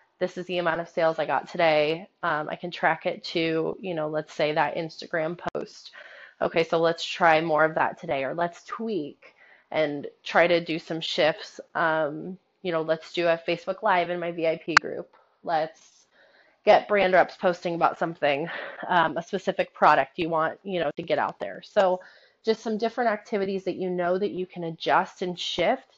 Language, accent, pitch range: English, American, 165-200 Hz